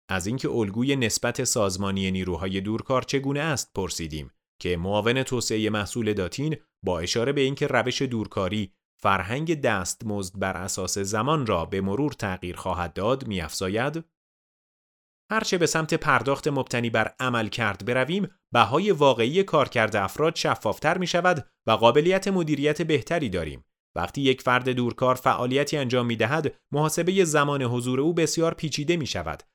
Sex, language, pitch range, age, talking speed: male, Persian, 115-155 Hz, 30-49, 145 wpm